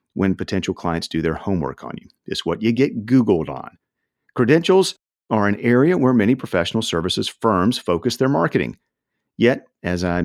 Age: 50-69